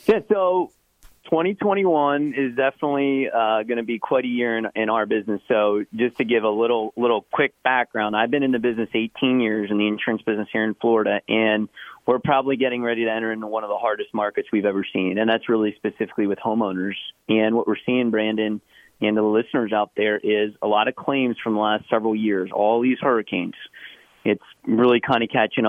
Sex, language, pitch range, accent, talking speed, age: male, English, 110-125 Hz, American, 210 wpm, 30-49